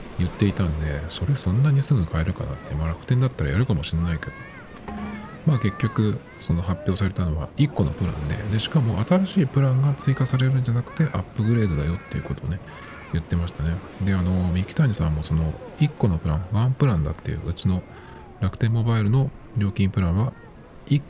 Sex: male